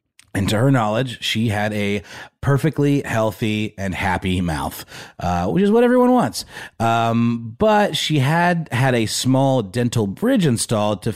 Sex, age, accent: male, 30-49, American